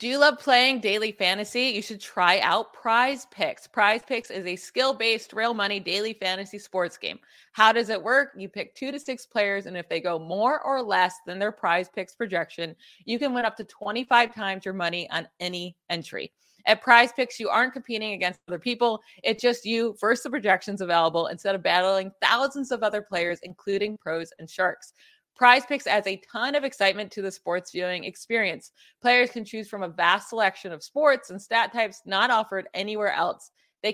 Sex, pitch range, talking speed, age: female, 190-235 Hz, 200 wpm, 20-39